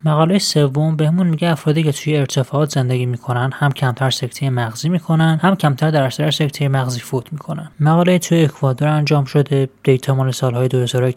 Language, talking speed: Persian, 170 wpm